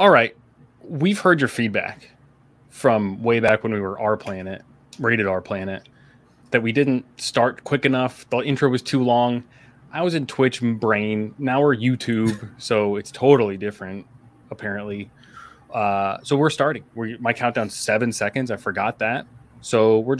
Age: 20-39